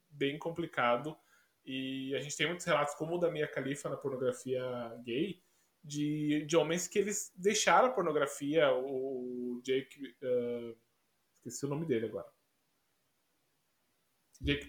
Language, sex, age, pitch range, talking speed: Portuguese, male, 20-39, 135-170 Hz, 135 wpm